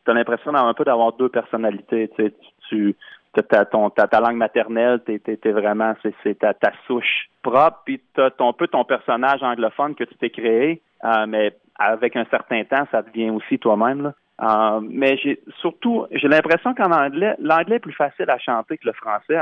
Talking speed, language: 200 wpm, French